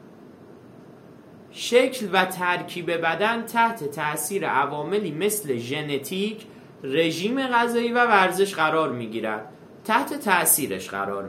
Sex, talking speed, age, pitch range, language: male, 95 wpm, 30-49, 135-205 Hz, Persian